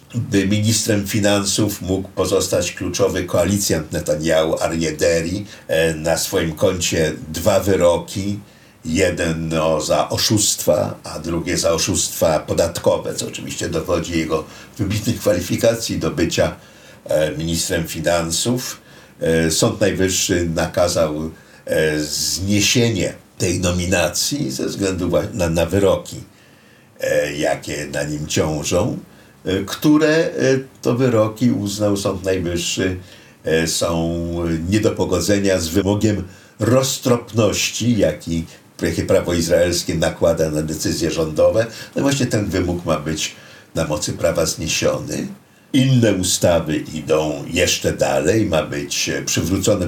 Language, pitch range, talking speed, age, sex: Polish, 80-105 Hz, 105 wpm, 60-79, male